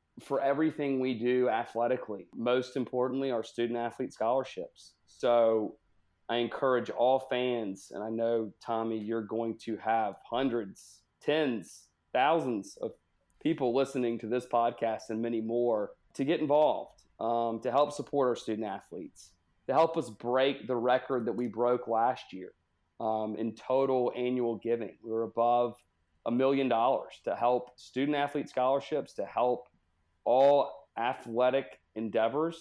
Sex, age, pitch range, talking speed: male, 30-49, 115-130 Hz, 140 wpm